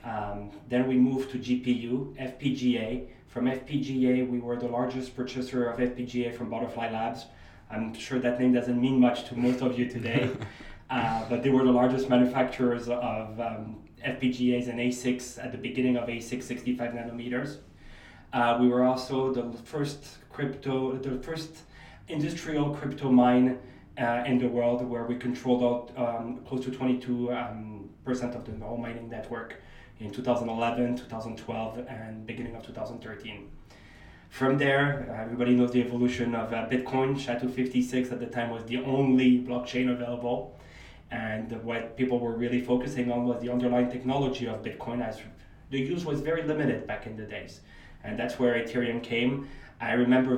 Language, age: English, 20-39